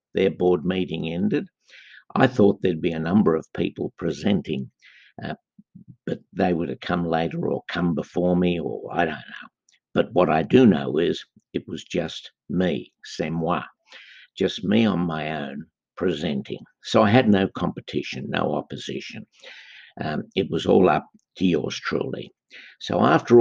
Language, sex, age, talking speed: English, male, 60-79, 160 wpm